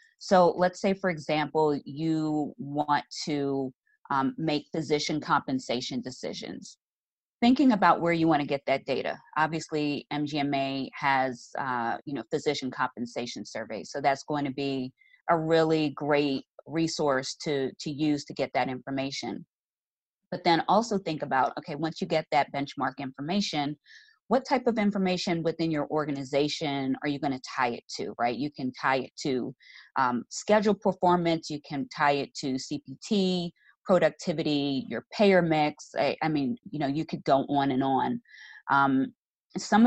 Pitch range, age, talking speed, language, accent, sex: 140-170 Hz, 30-49, 155 wpm, English, American, female